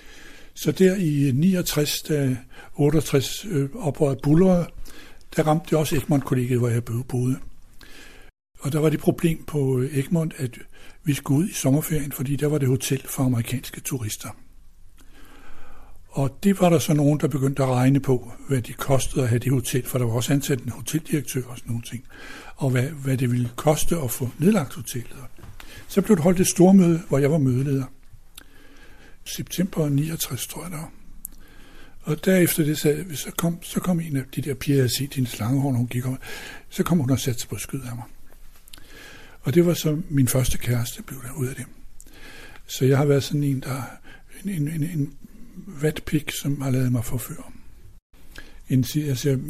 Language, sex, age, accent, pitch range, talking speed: Danish, male, 60-79, native, 125-155 Hz, 185 wpm